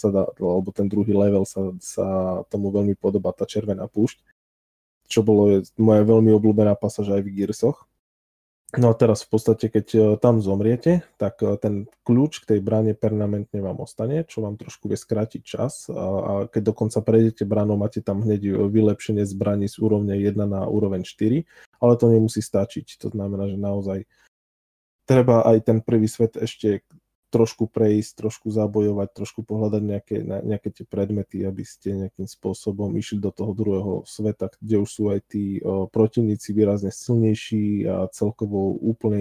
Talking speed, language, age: 165 wpm, Slovak, 20-39